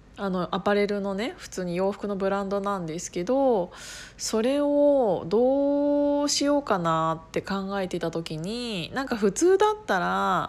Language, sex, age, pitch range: Japanese, female, 20-39, 175-245 Hz